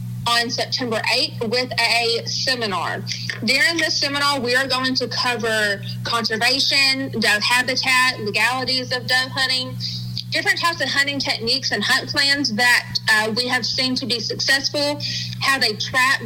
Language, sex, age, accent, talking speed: English, female, 30-49, American, 150 wpm